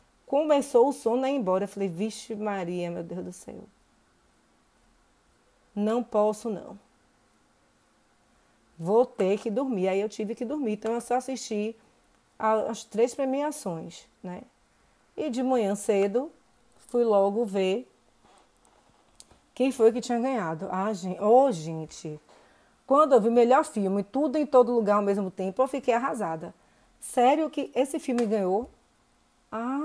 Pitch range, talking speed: 200-255 Hz, 145 wpm